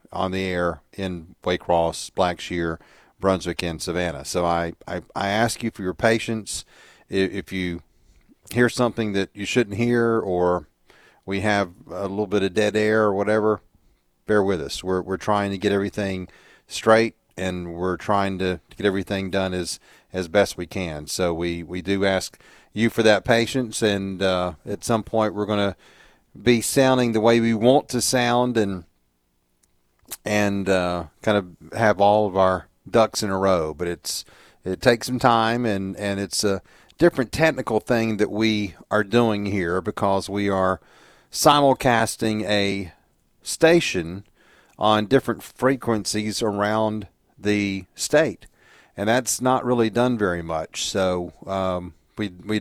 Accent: American